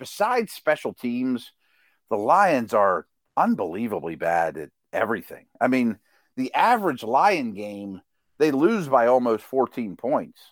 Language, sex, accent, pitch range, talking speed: English, male, American, 115-145 Hz, 125 wpm